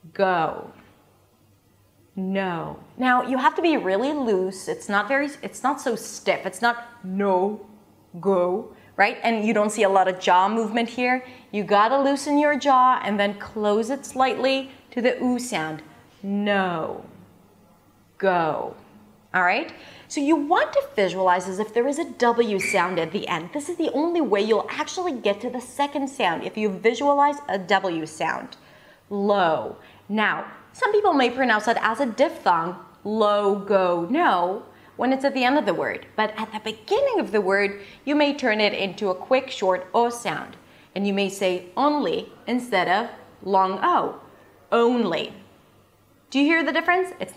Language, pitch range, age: English, 200-270 Hz, 30-49